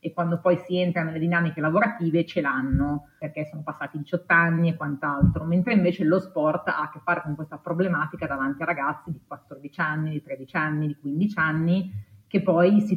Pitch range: 150-180 Hz